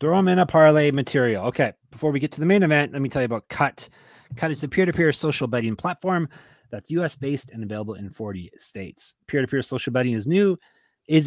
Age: 30-49